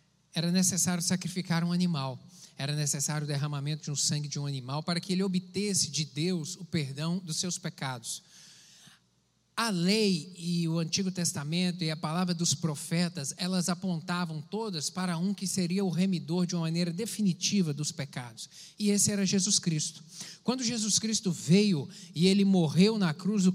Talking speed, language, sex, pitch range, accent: 170 wpm, Portuguese, male, 165-190 Hz, Brazilian